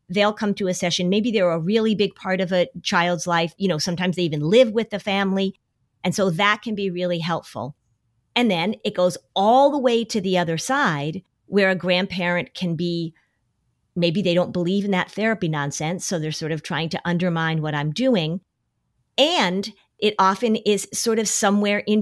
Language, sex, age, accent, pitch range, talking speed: English, female, 40-59, American, 165-210 Hz, 200 wpm